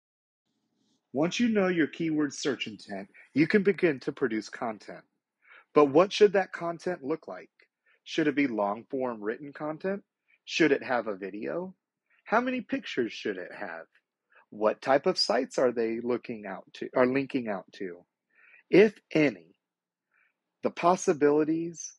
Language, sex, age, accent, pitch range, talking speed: English, male, 40-59, American, 130-190 Hz, 145 wpm